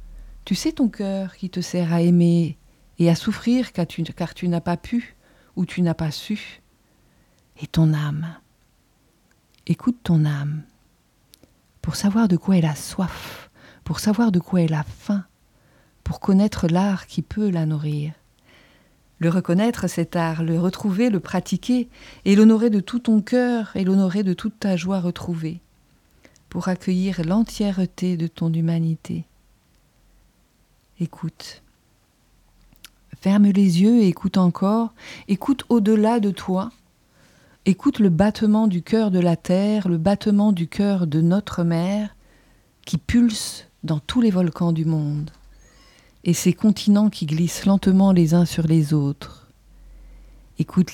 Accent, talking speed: French, 145 wpm